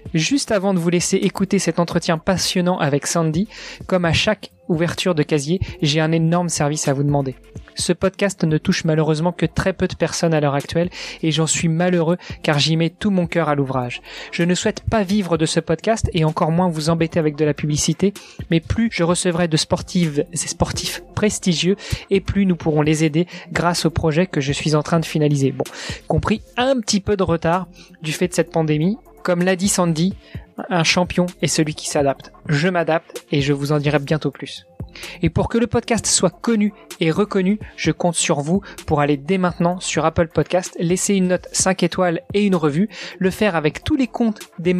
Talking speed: 210 wpm